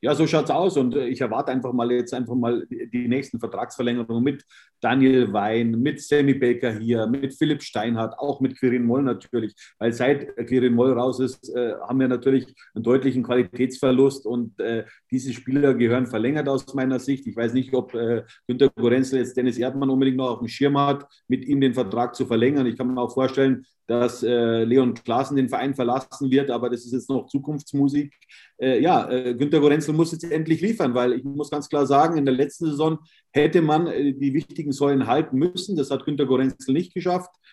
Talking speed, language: 195 wpm, German